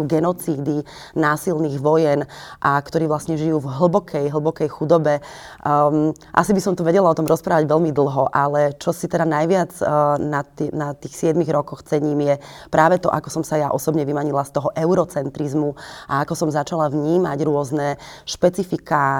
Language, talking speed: Slovak, 170 wpm